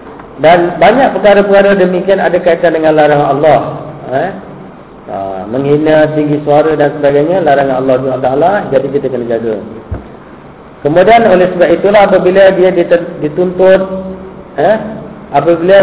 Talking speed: 125 wpm